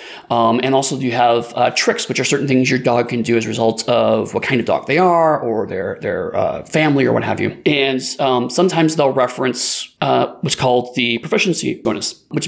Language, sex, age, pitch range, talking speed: English, male, 30-49, 125-155 Hz, 220 wpm